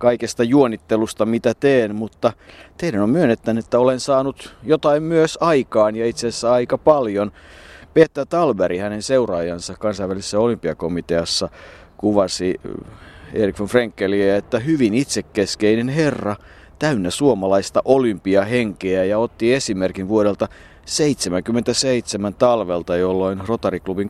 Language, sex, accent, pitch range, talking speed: Finnish, male, native, 95-115 Hz, 105 wpm